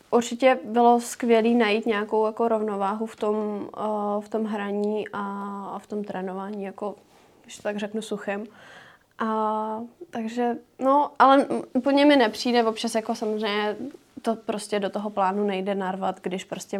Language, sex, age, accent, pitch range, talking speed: Czech, female, 20-39, native, 205-225 Hz, 150 wpm